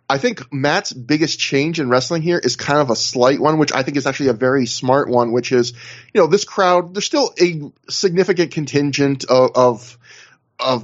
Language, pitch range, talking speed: English, 130-175 Hz, 205 wpm